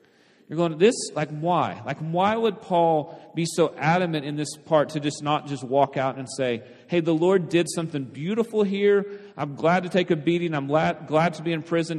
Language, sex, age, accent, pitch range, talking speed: English, male, 40-59, American, 145-180 Hz, 215 wpm